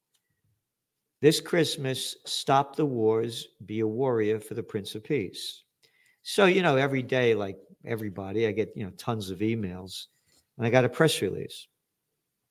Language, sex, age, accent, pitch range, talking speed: English, male, 50-69, American, 110-155 Hz, 160 wpm